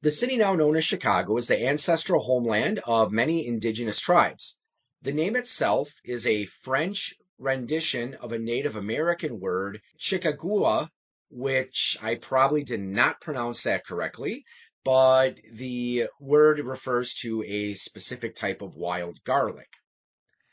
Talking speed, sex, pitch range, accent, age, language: 135 wpm, male, 110-155 Hz, American, 30-49, English